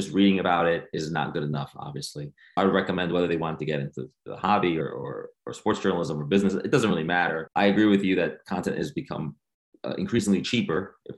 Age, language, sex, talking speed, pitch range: 30-49, English, male, 220 wpm, 85-105 Hz